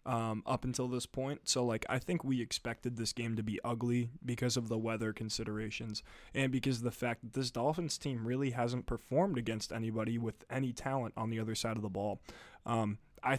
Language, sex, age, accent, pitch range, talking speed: English, male, 20-39, American, 115-135 Hz, 210 wpm